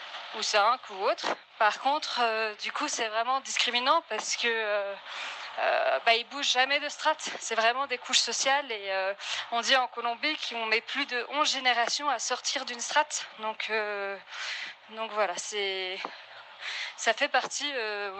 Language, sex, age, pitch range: French, female, 20-39, 215-265 Hz